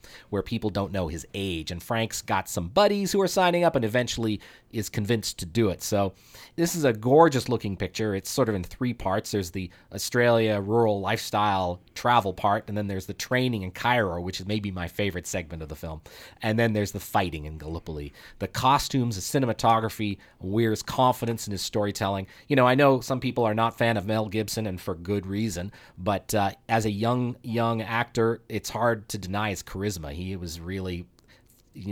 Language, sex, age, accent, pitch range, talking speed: English, male, 30-49, American, 95-125 Hz, 200 wpm